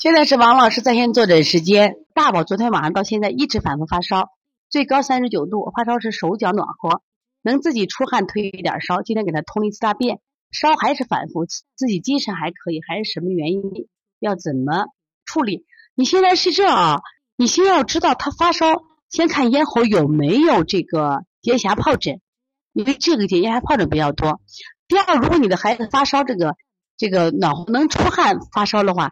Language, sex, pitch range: Chinese, female, 180-275 Hz